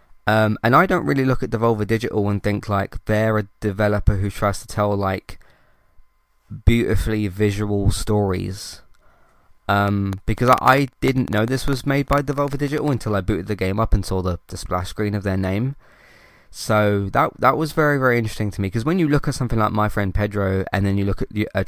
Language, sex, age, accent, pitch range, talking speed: English, male, 20-39, British, 100-125 Hz, 210 wpm